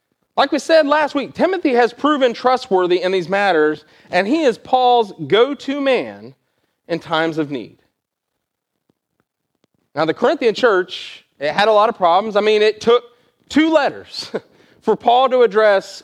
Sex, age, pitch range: male, 30-49, 200-265 Hz